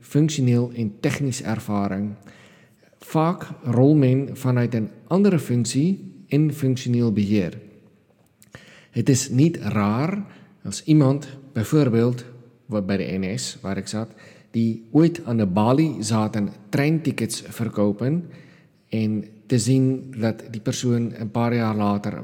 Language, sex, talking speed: Dutch, male, 120 wpm